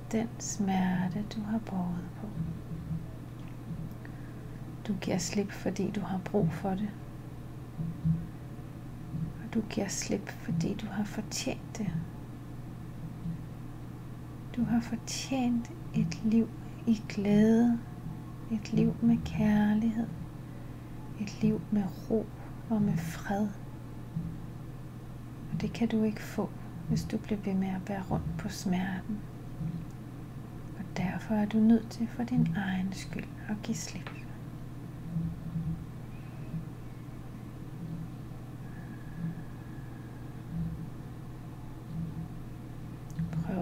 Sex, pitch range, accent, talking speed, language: female, 140-200 Hz, native, 100 wpm, Danish